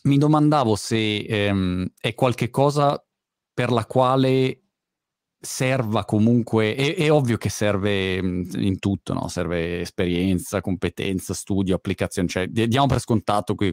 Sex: male